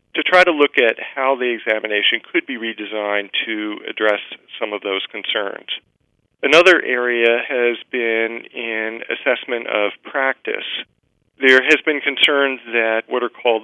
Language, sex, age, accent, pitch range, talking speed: English, male, 40-59, American, 110-125 Hz, 145 wpm